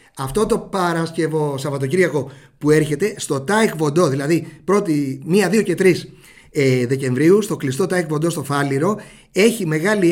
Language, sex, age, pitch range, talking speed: English, male, 30-49, 145-205 Hz, 135 wpm